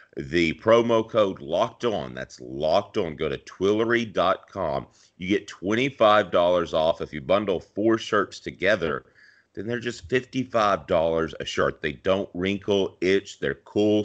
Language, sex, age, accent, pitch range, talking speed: English, male, 40-59, American, 90-115 Hz, 140 wpm